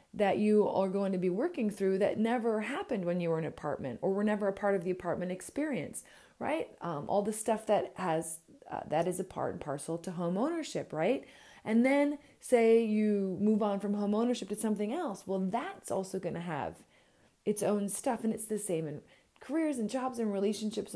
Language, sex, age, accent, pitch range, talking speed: English, female, 30-49, American, 180-230 Hz, 210 wpm